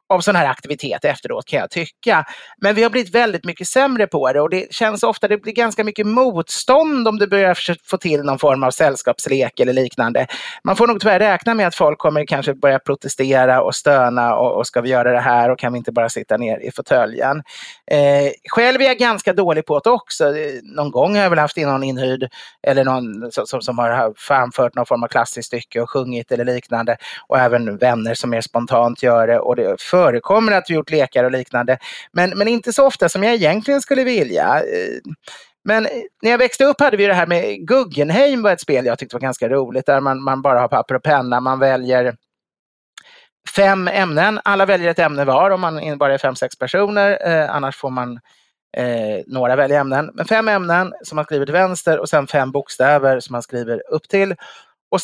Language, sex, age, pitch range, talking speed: English, male, 30-49, 130-205 Hz, 215 wpm